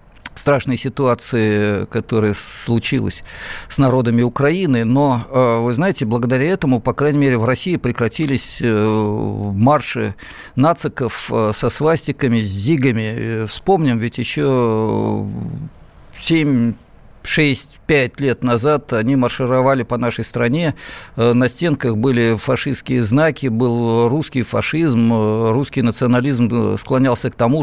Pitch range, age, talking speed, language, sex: 110-130 Hz, 50-69, 105 wpm, Russian, male